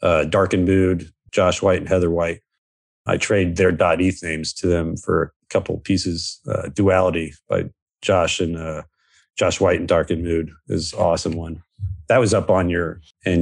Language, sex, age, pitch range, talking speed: English, male, 40-59, 85-110 Hz, 185 wpm